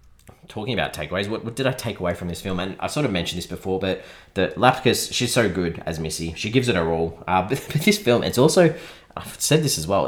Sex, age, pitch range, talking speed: male, 20-39, 85-110 Hz, 260 wpm